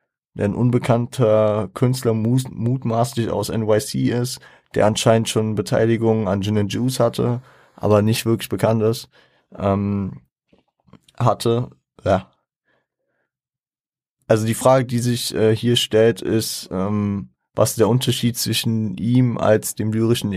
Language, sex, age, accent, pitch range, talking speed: German, male, 20-39, German, 105-115 Hz, 130 wpm